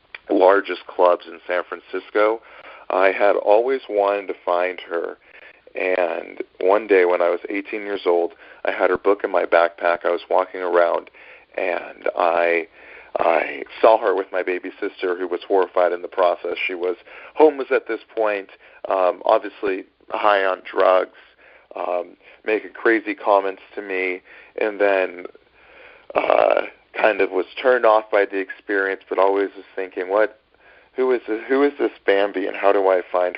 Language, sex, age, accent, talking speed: English, male, 40-59, American, 165 wpm